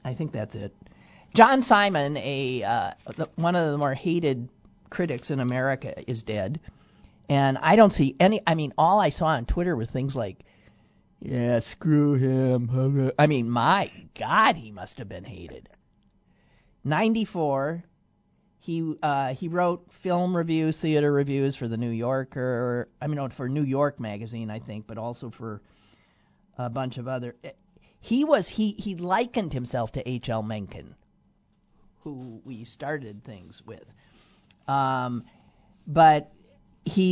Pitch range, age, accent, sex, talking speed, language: 125-170 Hz, 40-59, American, male, 150 wpm, English